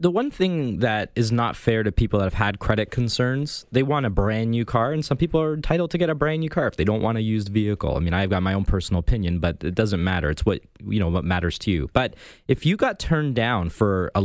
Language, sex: English, male